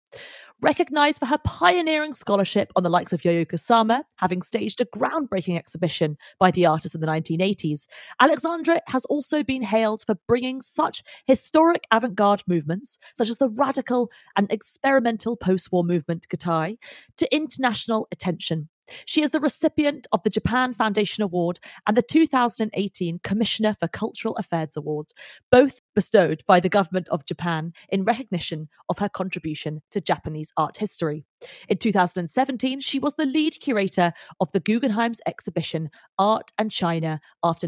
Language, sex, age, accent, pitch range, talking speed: English, female, 30-49, British, 175-260 Hz, 150 wpm